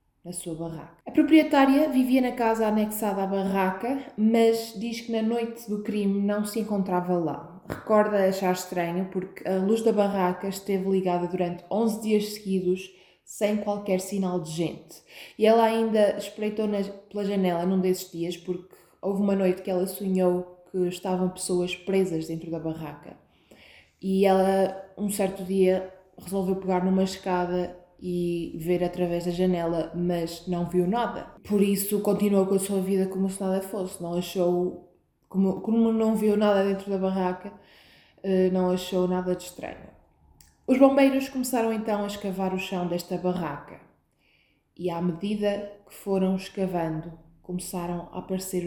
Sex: female